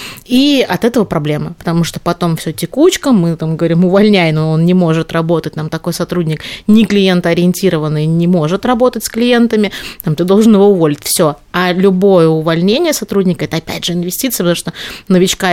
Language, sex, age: Russian, female, 30-49